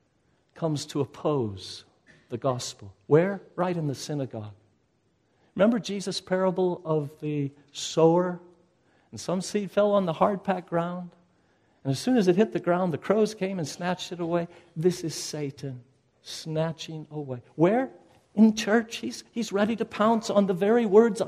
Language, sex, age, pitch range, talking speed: English, male, 50-69, 140-190 Hz, 160 wpm